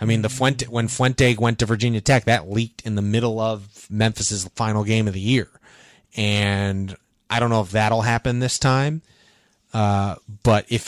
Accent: American